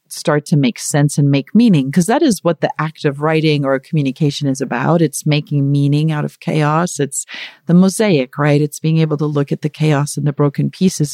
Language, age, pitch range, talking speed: English, 40-59, 150-185 Hz, 220 wpm